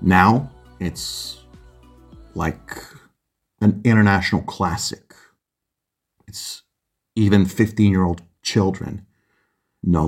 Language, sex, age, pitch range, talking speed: English, male, 40-59, 95-105 Hz, 75 wpm